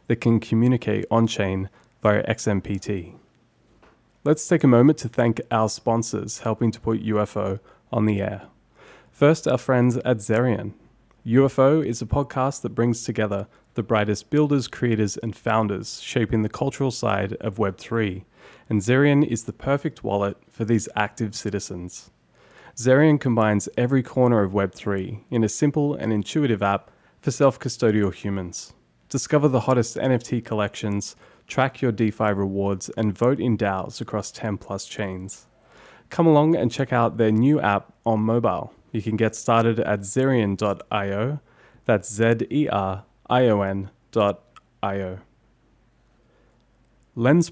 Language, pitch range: English, 100-125 Hz